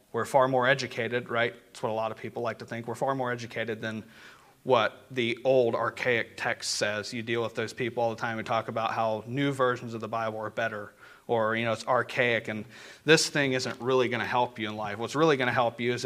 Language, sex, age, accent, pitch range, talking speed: English, male, 30-49, American, 115-135 Hz, 250 wpm